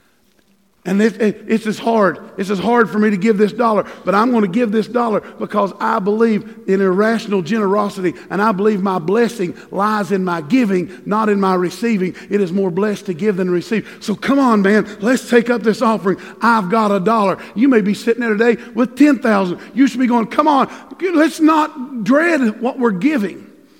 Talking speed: 200 wpm